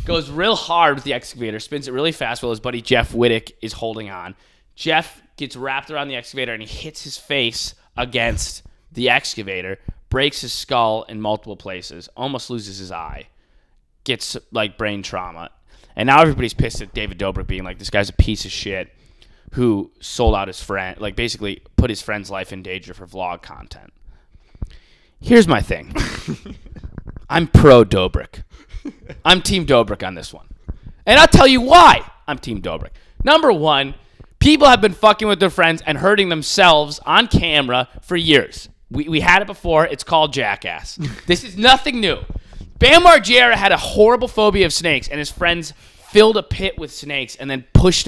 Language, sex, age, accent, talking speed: English, male, 20-39, American, 180 wpm